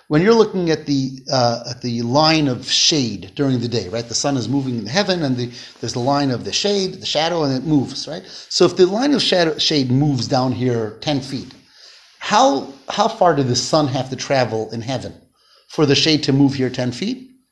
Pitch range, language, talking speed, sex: 135-210 Hz, English, 225 wpm, male